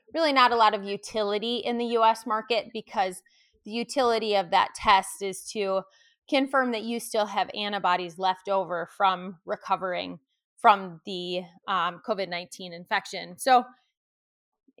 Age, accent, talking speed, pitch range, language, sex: 20-39, American, 140 wpm, 190-235 Hz, English, female